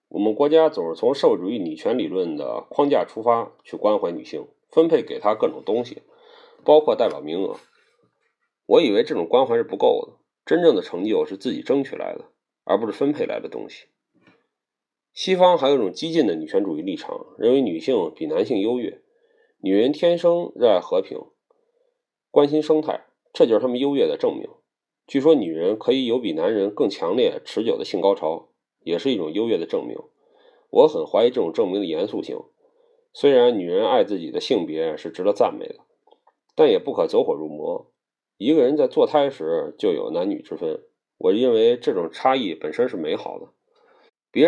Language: Chinese